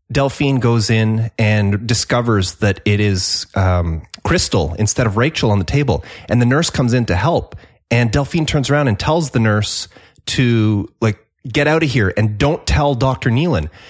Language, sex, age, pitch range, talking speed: English, male, 30-49, 105-135 Hz, 180 wpm